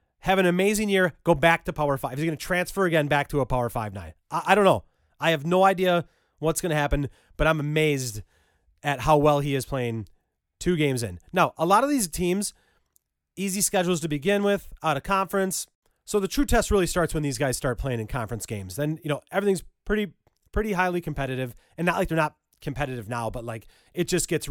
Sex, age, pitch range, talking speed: male, 30-49, 135-180 Hz, 225 wpm